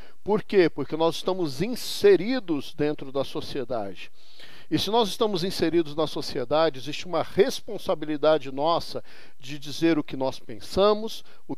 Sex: male